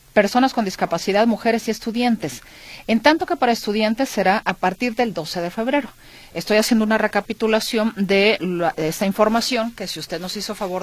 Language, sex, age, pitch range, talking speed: Spanish, female, 40-59, 180-235 Hz, 185 wpm